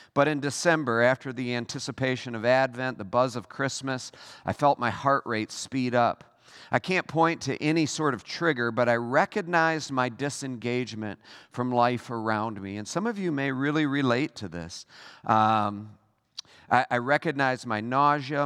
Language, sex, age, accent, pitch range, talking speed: English, male, 50-69, American, 115-145 Hz, 165 wpm